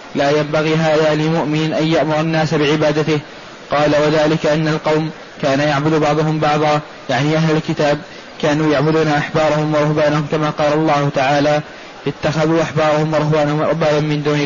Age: 20-39